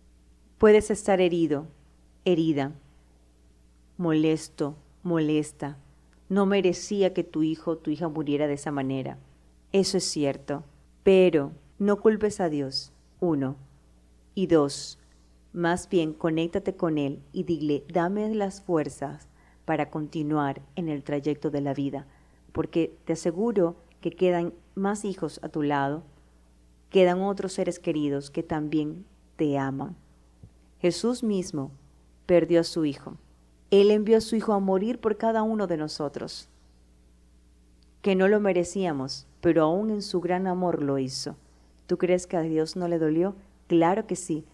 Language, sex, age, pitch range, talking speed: Spanish, female, 30-49, 140-180 Hz, 145 wpm